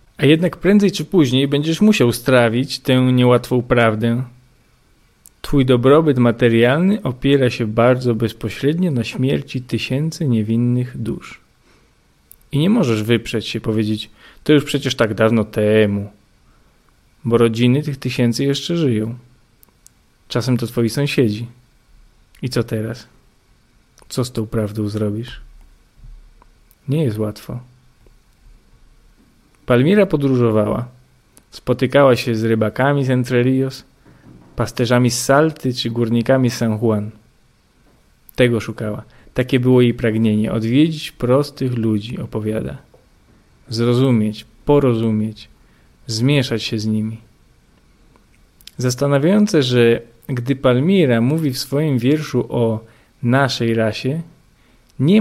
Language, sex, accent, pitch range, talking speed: Polish, male, native, 110-130 Hz, 110 wpm